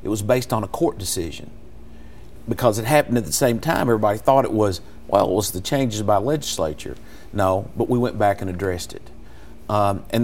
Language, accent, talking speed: English, American, 205 wpm